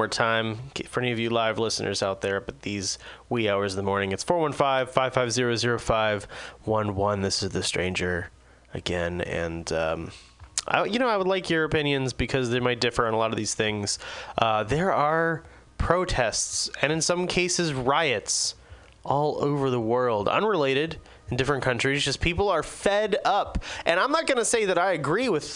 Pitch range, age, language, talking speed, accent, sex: 105-135 Hz, 20-39, English, 175 wpm, American, male